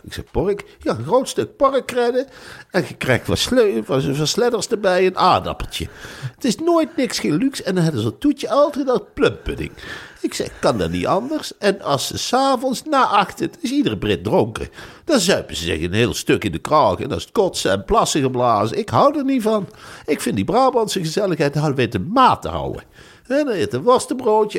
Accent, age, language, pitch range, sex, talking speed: Dutch, 60-79, Dutch, 200-300 Hz, male, 215 wpm